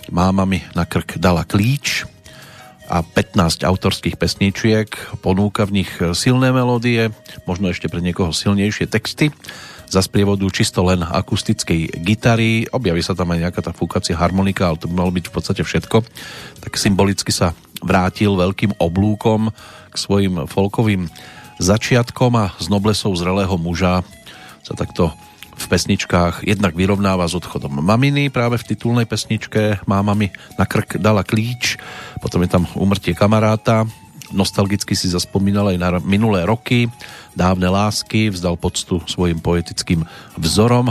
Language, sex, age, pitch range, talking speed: Slovak, male, 40-59, 90-110 Hz, 140 wpm